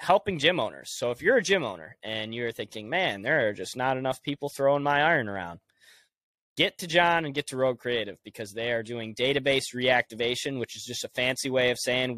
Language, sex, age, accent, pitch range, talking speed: English, male, 20-39, American, 115-150 Hz, 220 wpm